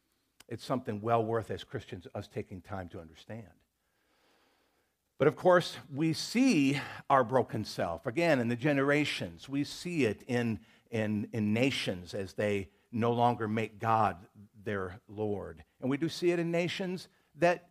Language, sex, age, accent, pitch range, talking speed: English, male, 50-69, American, 100-135 Hz, 155 wpm